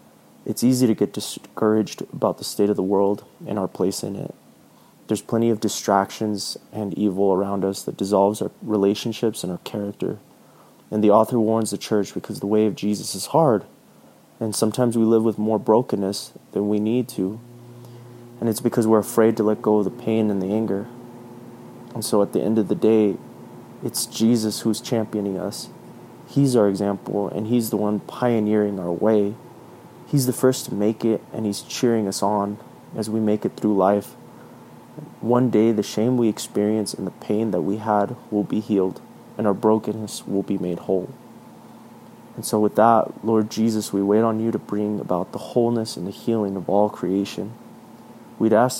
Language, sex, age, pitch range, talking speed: English, male, 30-49, 100-115 Hz, 190 wpm